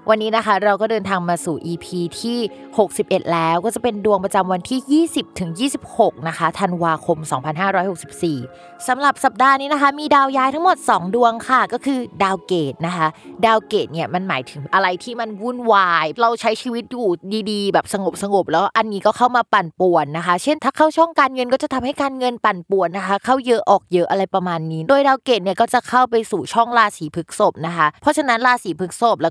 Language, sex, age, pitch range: Thai, female, 20-39, 170-240 Hz